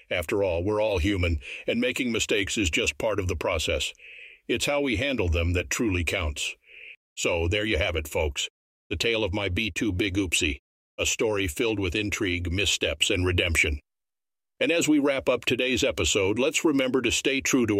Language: English